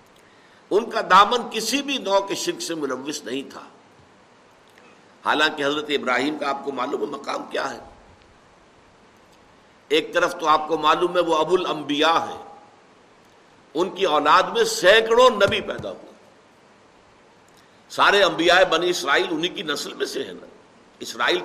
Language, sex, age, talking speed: Urdu, male, 60-79, 150 wpm